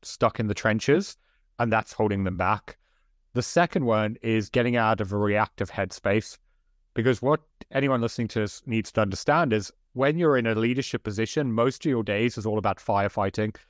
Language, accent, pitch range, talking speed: English, British, 105-130 Hz, 190 wpm